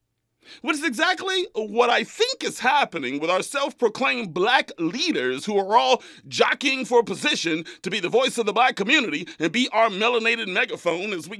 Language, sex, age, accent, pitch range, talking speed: English, male, 40-59, American, 220-300 Hz, 180 wpm